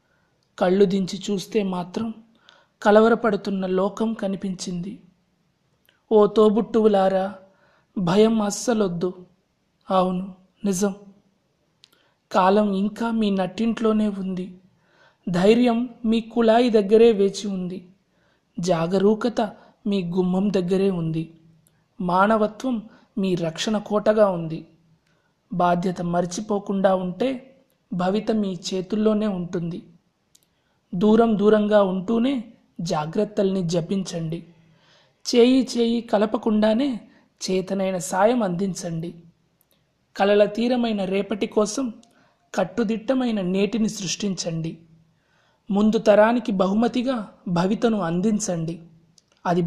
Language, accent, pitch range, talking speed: Telugu, native, 180-220 Hz, 75 wpm